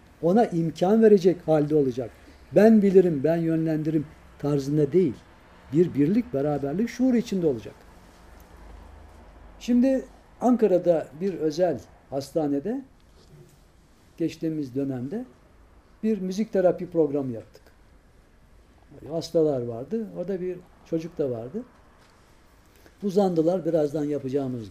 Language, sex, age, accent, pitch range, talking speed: Turkish, male, 60-79, native, 115-190 Hz, 95 wpm